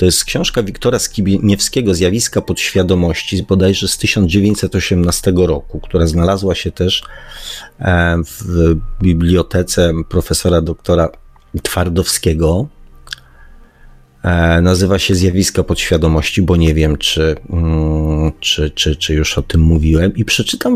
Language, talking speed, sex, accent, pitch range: Polish, 105 wpm, male, native, 85-100 Hz